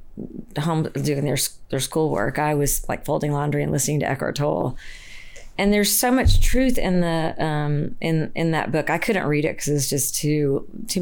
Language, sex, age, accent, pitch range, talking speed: English, female, 40-59, American, 150-185 Hz, 195 wpm